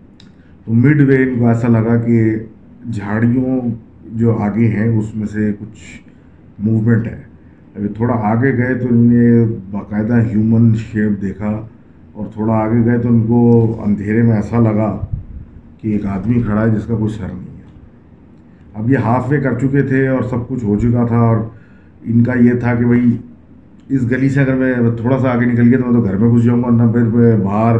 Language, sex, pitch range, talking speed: Urdu, male, 110-120 Hz, 185 wpm